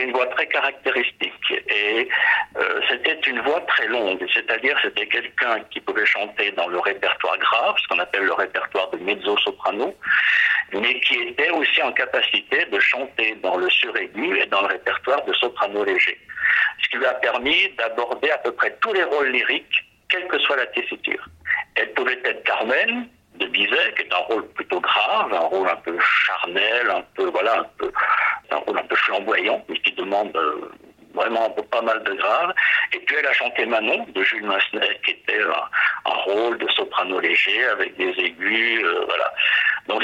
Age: 60-79